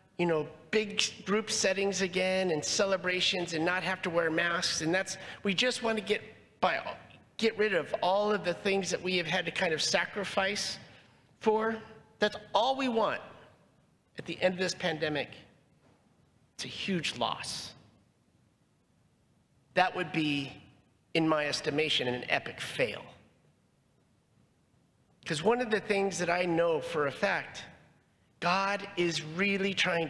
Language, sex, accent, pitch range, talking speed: English, male, American, 175-220 Hz, 150 wpm